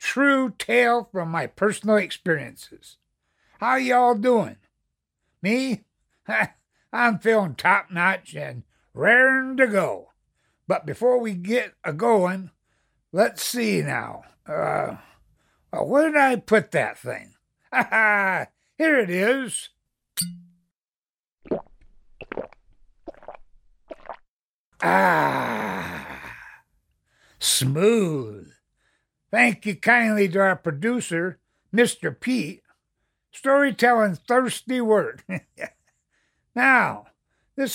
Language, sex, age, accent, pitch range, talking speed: English, male, 60-79, American, 175-250 Hz, 85 wpm